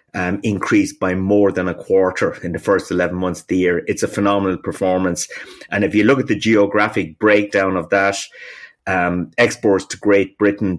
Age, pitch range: 30-49, 90-100 Hz